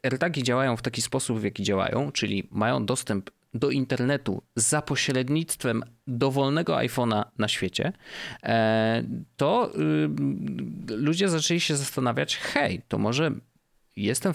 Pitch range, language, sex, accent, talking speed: 110-135 Hz, Polish, male, native, 115 wpm